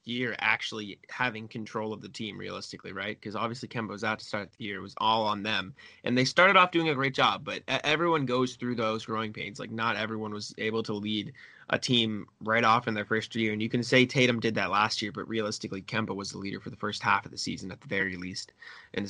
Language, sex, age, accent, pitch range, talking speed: English, male, 20-39, American, 110-130 Hz, 250 wpm